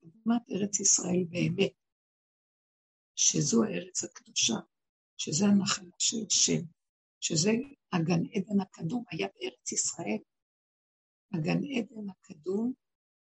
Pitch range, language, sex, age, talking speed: 190-230 Hz, Hebrew, female, 60-79, 95 wpm